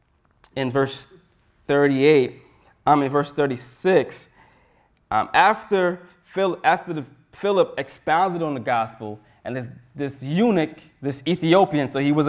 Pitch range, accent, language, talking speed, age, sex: 130-170 Hz, American, English, 130 wpm, 20-39, male